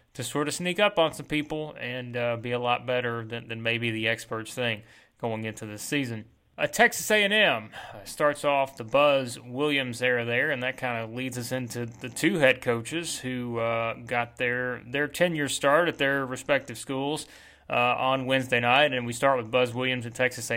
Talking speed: 200 wpm